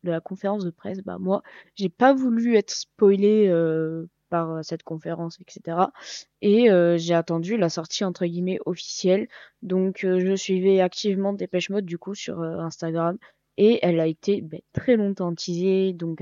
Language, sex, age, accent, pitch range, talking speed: French, female, 20-39, French, 165-200 Hz, 175 wpm